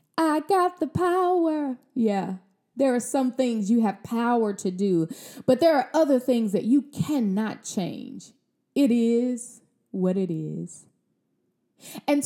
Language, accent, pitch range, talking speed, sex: English, American, 210-260 Hz, 140 wpm, female